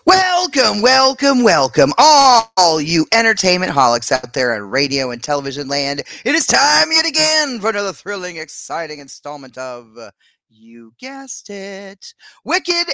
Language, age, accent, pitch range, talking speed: English, 30-49, American, 150-210 Hz, 135 wpm